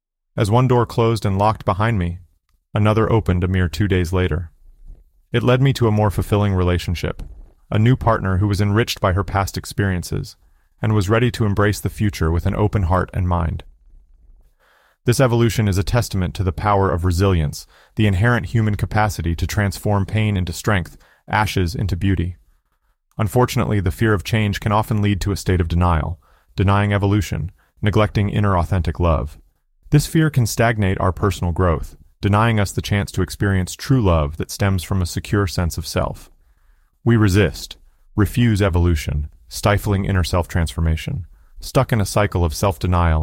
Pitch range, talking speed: 85-105 Hz, 170 wpm